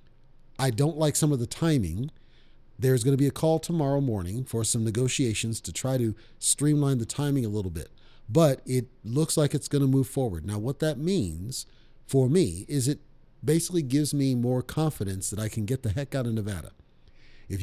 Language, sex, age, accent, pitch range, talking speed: English, male, 40-59, American, 115-155 Hz, 195 wpm